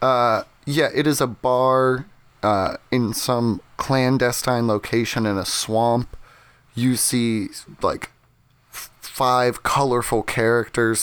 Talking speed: 110 wpm